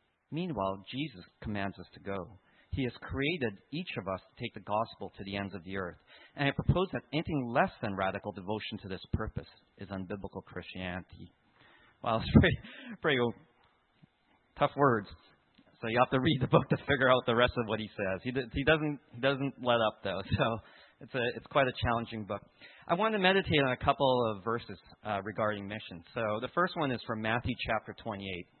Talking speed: 200 wpm